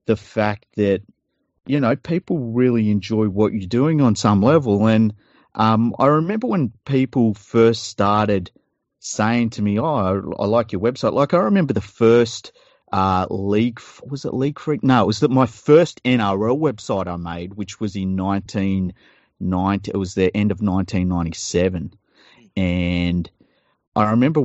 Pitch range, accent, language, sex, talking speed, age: 95-125 Hz, Australian, English, male, 160 wpm, 40-59